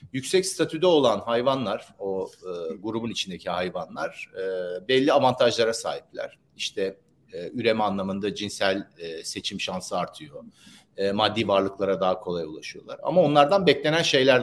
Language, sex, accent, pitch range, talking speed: Turkish, male, native, 105-155 Hz, 135 wpm